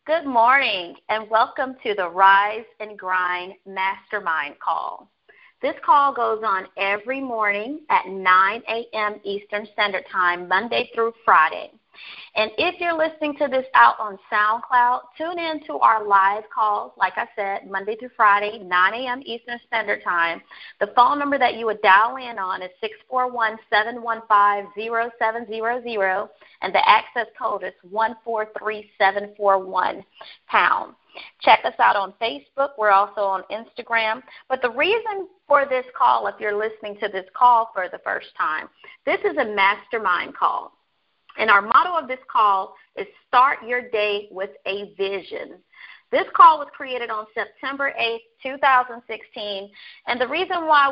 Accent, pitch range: American, 200-255 Hz